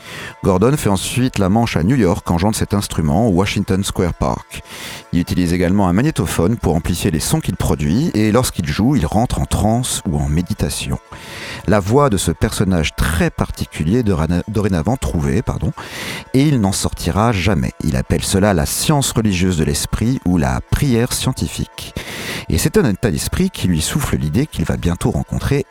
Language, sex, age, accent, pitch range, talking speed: French, male, 40-59, French, 85-115 Hz, 180 wpm